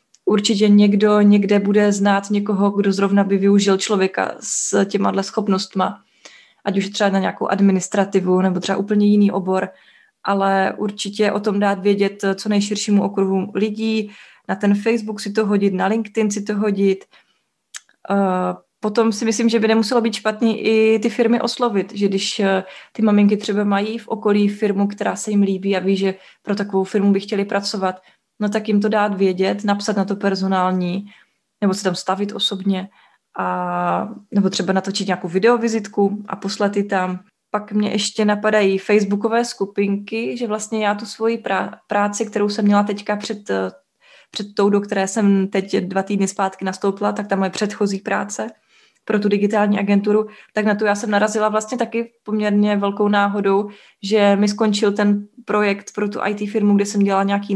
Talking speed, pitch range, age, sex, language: 170 wpm, 195-215 Hz, 20-39, female, Czech